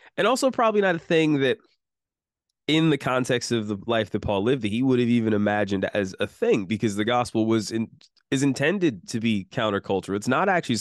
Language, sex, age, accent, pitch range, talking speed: English, male, 20-39, American, 100-120 Hz, 210 wpm